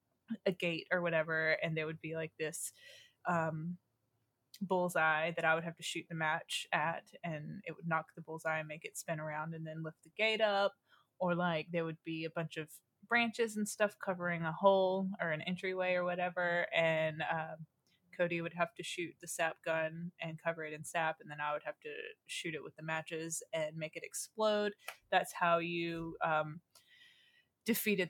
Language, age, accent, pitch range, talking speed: English, 20-39, American, 160-195 Hz, 195 wpm